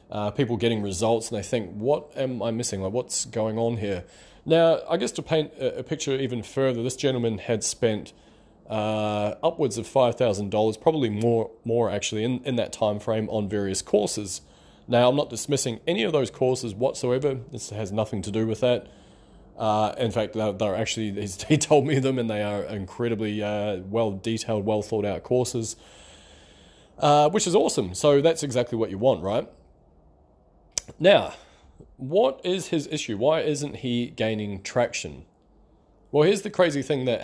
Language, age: English, 20-39